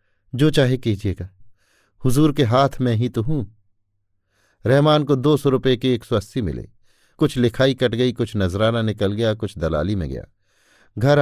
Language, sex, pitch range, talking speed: Hindi, male, 100-130 Hz, 175 wpm